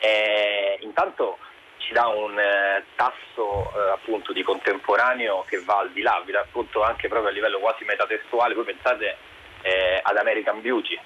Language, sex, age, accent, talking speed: Italian, male, 30-49, native, 165 wpm